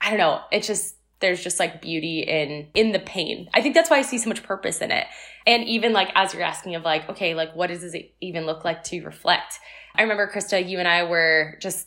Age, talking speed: 20-39, 255 wpm